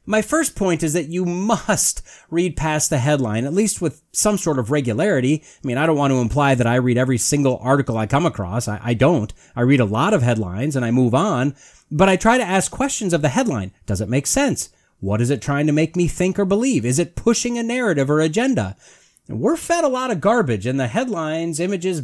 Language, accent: English, American